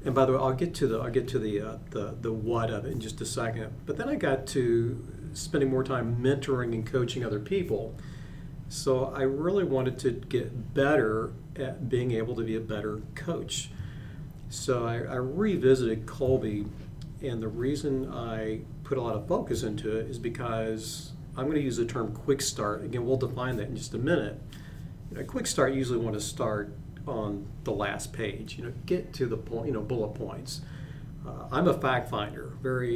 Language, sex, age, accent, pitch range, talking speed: English, male, 40-59, American, 110-140 Hz, 210 wpm